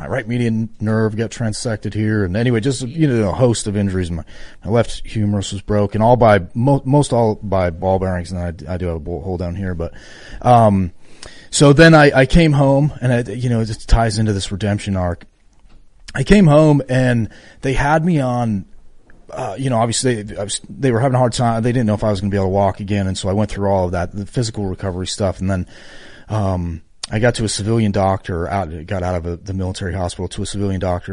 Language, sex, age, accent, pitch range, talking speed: English, male, 30-49, American, 95-115 Hz, 240 wpm